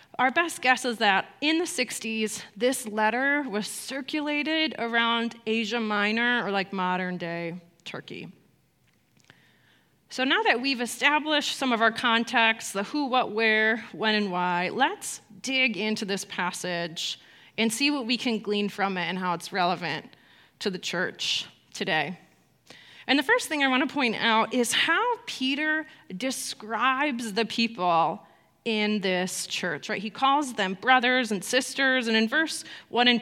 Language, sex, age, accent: English, female, 30-49, American